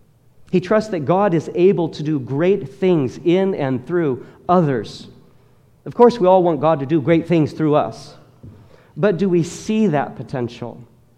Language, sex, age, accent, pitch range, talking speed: English, male, 40-59, American, 125-170 Hz, 170 wpm